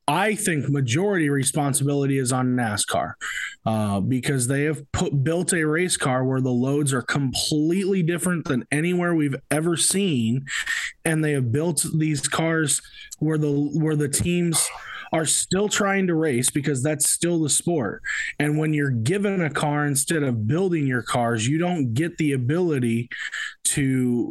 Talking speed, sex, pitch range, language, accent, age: 160 wpm, male, 125-160 Hz, English, American, 20-39